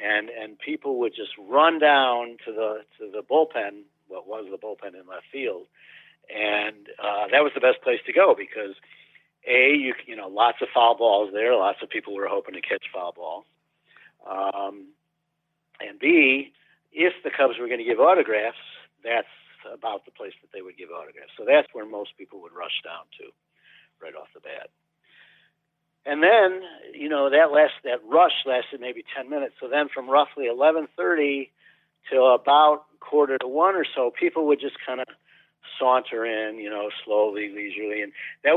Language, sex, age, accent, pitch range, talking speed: English, male, 60-79, American, 115-175 Hz, 180 wpm